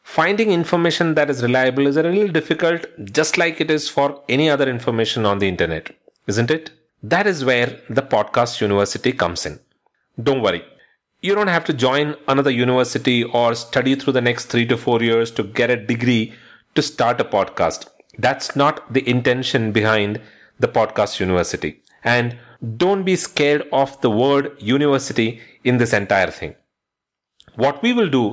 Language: English